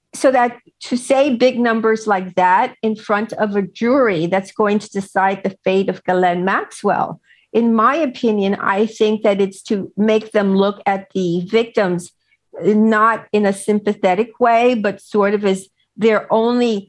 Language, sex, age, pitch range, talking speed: English, female, 50-69, 190-240 Hz, 165 wpm